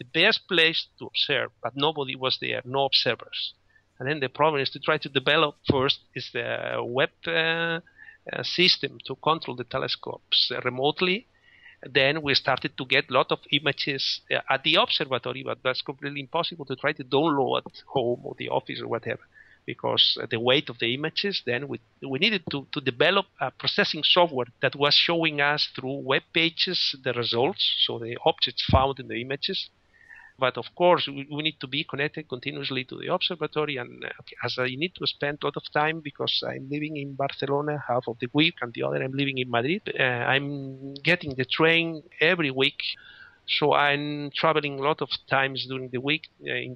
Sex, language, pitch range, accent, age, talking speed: male, English, 130-160 Hz, Italian, 50-69, 195 wpm